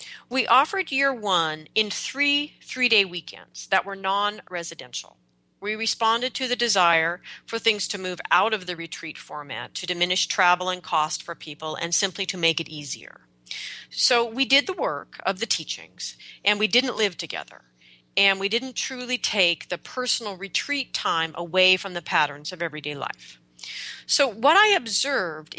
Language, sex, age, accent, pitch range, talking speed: English, female, 40-59, American, 165-235 Hz, 170 wpm